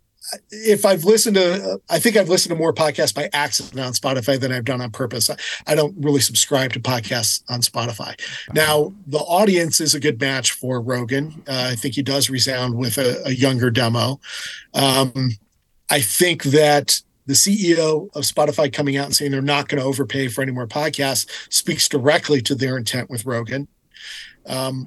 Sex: male